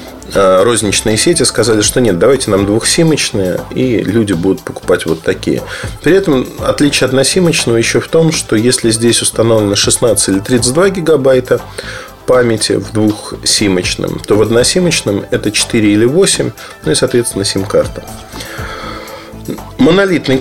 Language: Russian